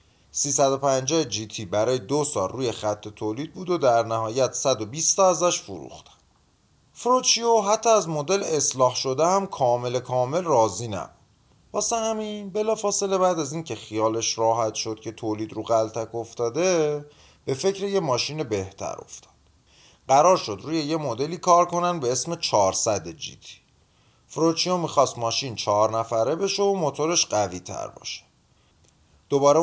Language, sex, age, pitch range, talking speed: Persian, male, 30-49, 115-170 Hz, 145 wpm